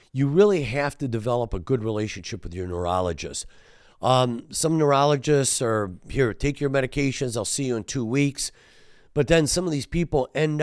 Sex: male